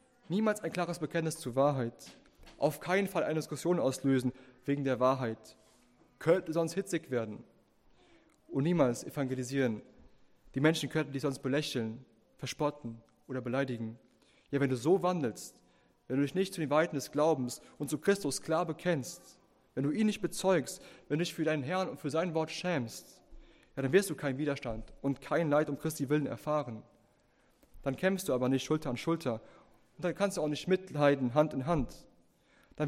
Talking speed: 180 wpm